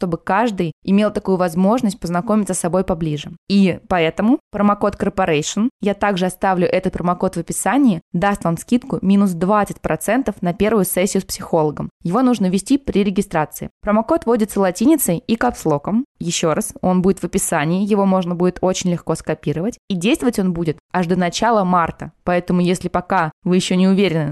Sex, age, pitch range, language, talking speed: female, 20-39, 175-210 Hz, Russian, 165 wpm